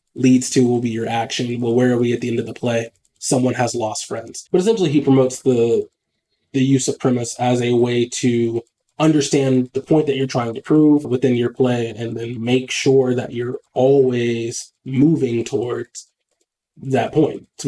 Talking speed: 190 wpm